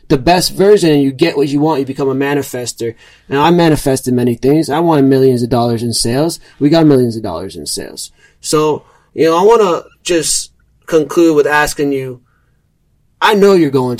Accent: American